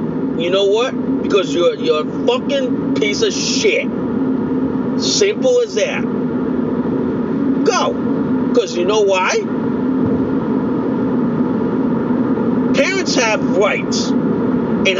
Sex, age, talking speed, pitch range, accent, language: male, 40-59, 90 wpm, 225-255 Hz, American, English